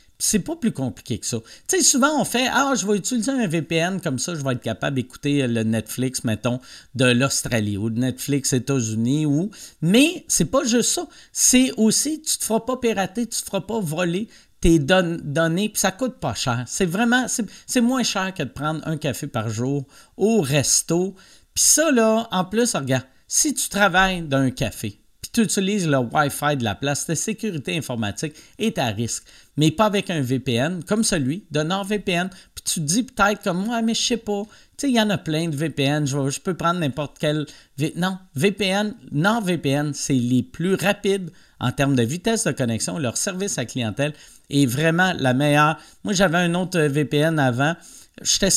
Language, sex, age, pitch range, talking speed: French, male, 50-69, 140-210 Hz, 200 wpm